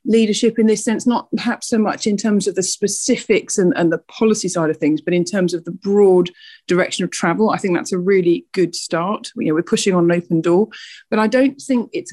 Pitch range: 160-205 Hz